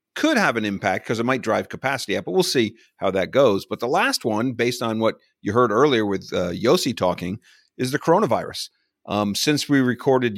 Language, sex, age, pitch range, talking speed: English, male, 40-59, 105-125 Hz, 215 wpm